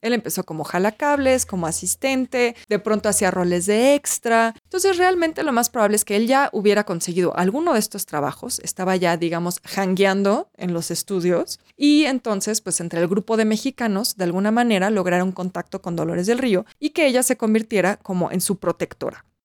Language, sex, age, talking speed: Spanish, female, 20-39, 185 wpm